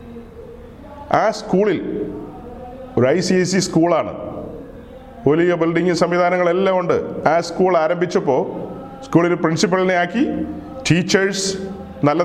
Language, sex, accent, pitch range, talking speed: Malayalam, male, native, 160-205 Hz, 85 wpm